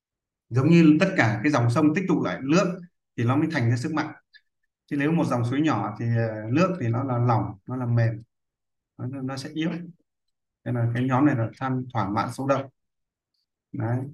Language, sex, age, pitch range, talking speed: Vietnamese, male, 20-39, 120-145 Hz, 210 wpm